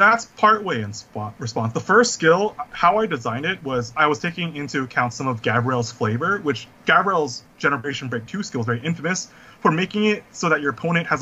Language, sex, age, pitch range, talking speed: English, male, 30-49, 120-165 Hz, 210 wpm